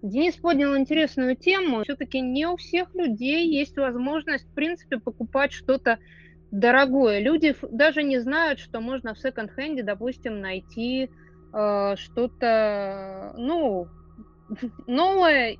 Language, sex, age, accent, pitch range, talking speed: Russian, female, 20-39, native, 215-285 Hz, 110 wpm